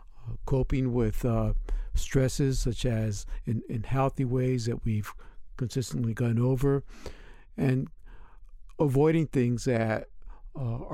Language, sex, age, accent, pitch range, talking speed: English, male, 60-79, American, 115-135 Hz, 110 wpm